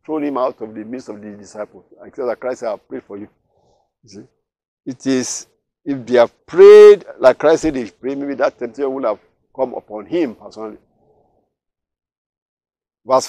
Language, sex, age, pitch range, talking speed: English, male, 50-69, 110-150 Hz, 190 wpm